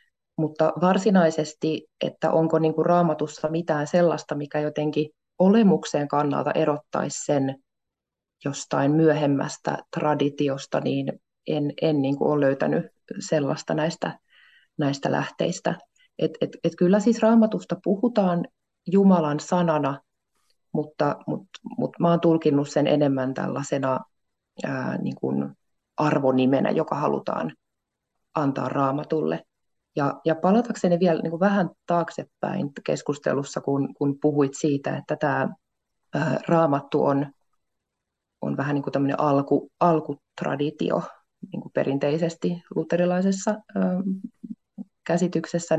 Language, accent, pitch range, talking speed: Finnish, native, 145-180 Hz, 105 wpm